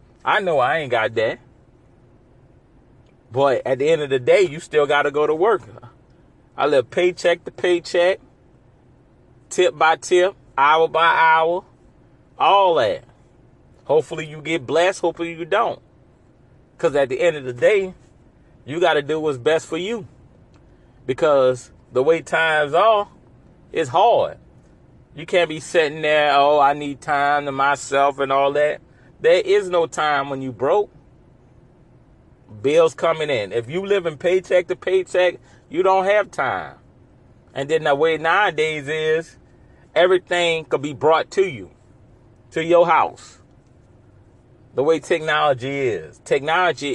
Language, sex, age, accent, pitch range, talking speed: English, male, 30-49, American, 130-175 Hz, 150 wpm